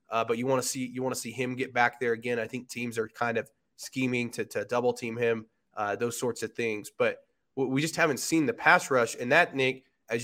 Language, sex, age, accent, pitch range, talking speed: English, male, 20-39, American, 115-140 Hz, 260 wpm